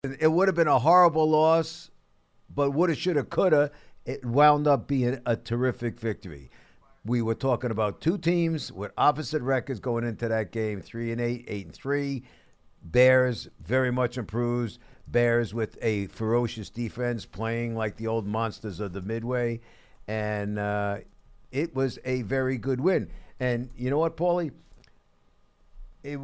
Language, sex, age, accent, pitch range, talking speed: English, male, 50-69, American, 115-140 Hz, 160 wpm